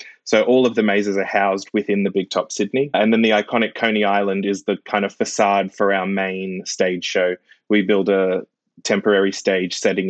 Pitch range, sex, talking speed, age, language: 95-115 Hz, male, 200 wpm, 20-39, English